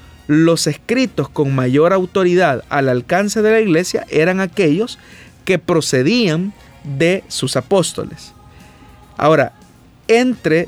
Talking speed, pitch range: 105 wpm, 145-195 Hz